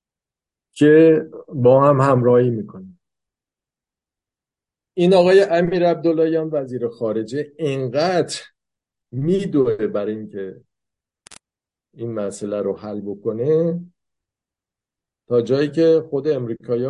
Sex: male